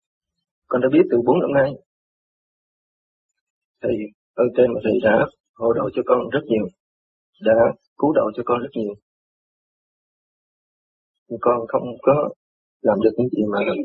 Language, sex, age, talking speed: Vietnamese, male, 30-49, 145 wpm